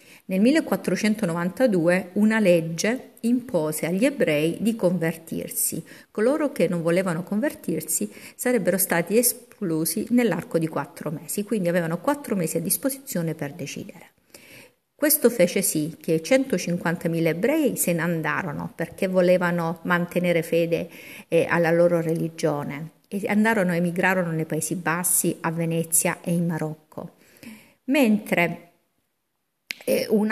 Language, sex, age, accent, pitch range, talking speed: Italian, female, 50-69, native, 165-210 Hz, 115 wpm